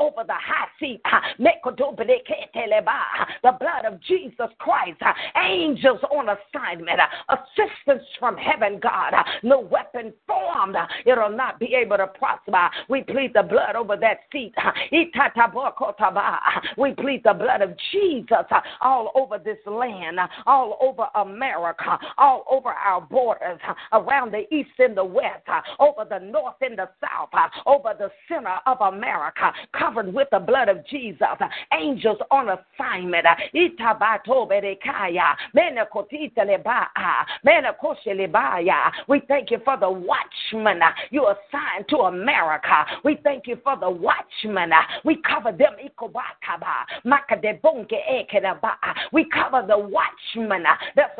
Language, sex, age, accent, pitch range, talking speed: English, female, 40-59, American, 215-295 Hz, 115 wpm